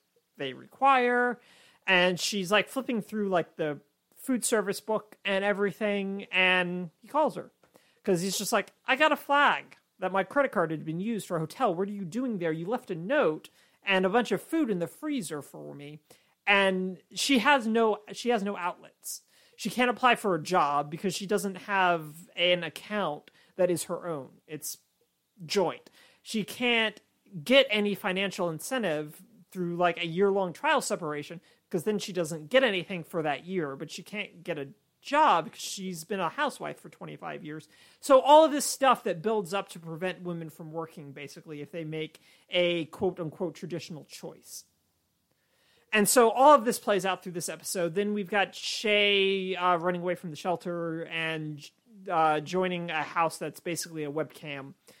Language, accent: English, American